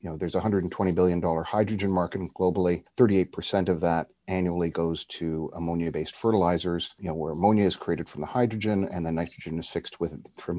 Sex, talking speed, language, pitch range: male, 180 wpm, English, 80-100 Hz